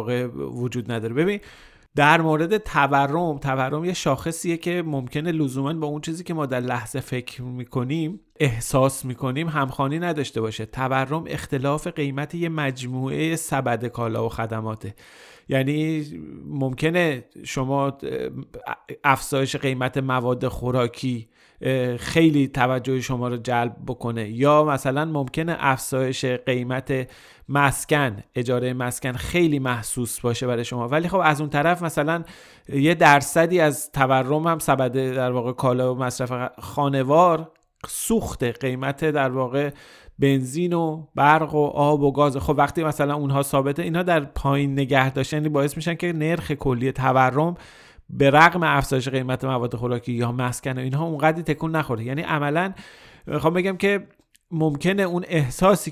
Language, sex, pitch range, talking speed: Persian, male, 130-155 Hz, 135 wpm